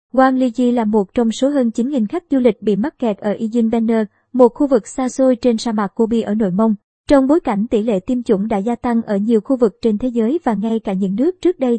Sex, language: male, Vietnamese